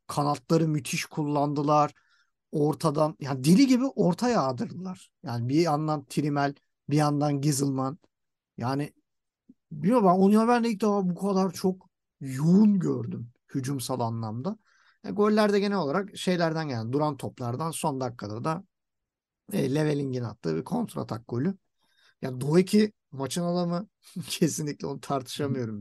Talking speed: 135 wpm